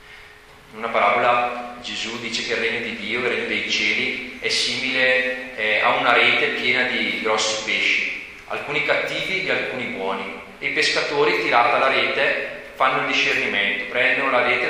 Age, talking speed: 30-49, 165 wpm